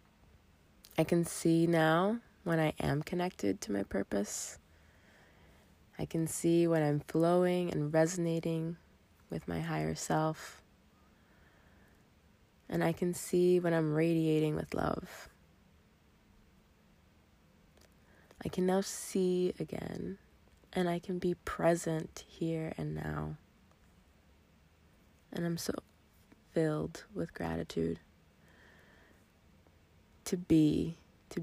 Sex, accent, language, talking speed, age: female, American, English, 105 wpm, 20-39